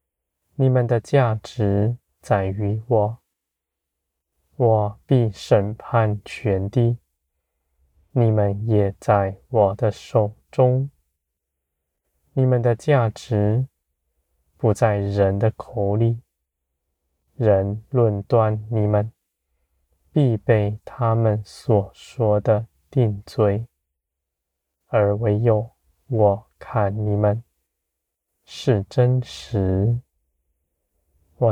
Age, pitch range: 20-39, 70-115 Hz